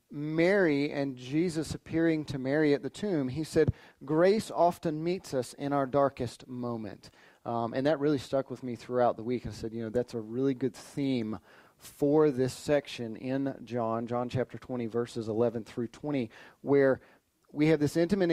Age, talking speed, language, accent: 30-49, 180 wpm, English, American